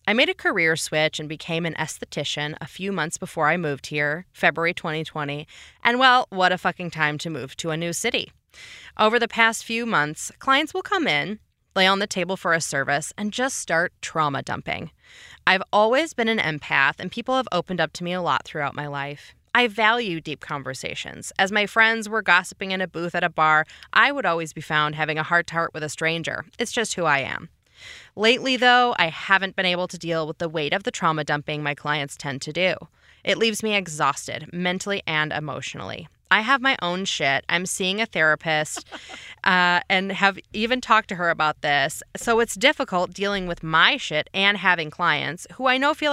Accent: American